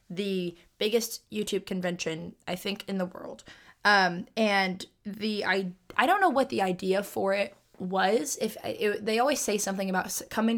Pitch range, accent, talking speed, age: 185-220 Hz, American, 175 wpm, 20-39